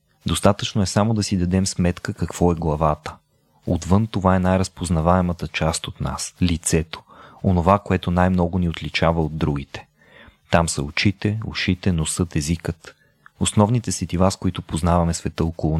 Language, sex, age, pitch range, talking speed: Bulgarian, male, 30-49, 80-100 Hz, 150 wpm